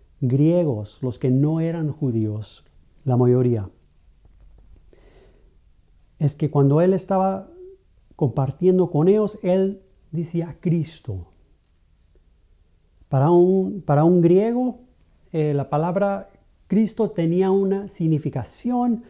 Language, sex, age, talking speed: Spanish, male, 40-59, 95 wpm